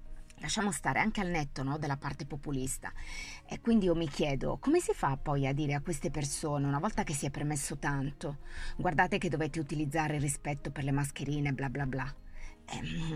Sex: female